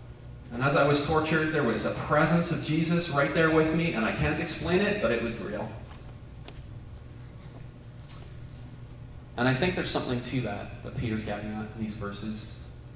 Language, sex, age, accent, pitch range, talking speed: English, male, 30-49, American, 115-130 Hz, 175 wpm